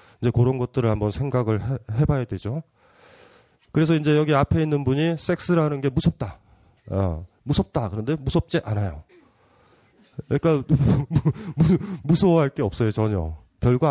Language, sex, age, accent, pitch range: Korean, male, 30-49, native, 105-160 Hz